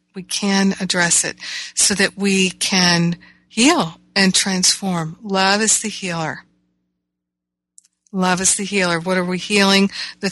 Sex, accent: female, American